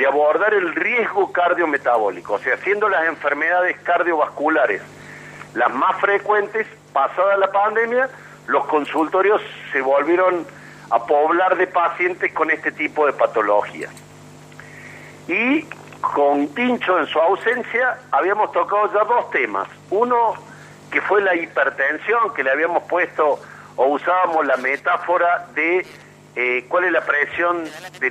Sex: male